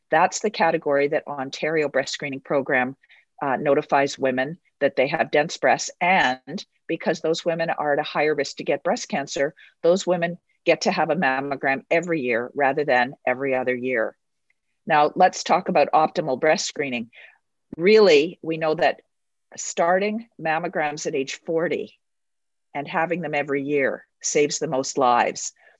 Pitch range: 135-170 Hz